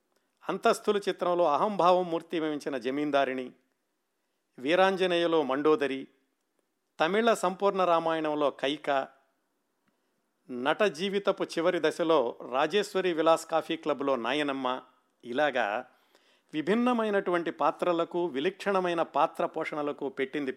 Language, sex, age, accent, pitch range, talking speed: Telugu, male, 50-69, native, 145-185 Hz, 80 wpm